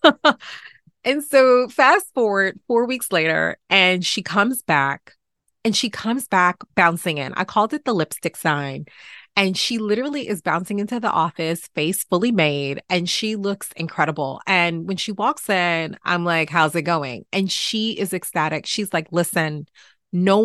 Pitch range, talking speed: 165-215 Hz, 165 wpm